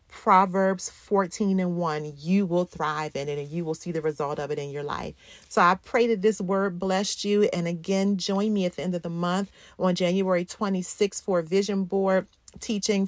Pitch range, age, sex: 165-195 Hz, 40-59, female